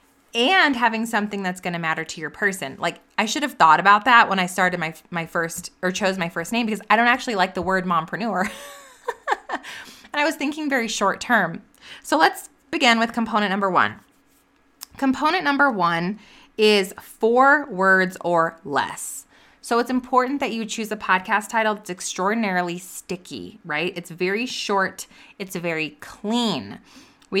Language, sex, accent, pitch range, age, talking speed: English, female, American, 180-235 Hz, 20-39, 170 wpm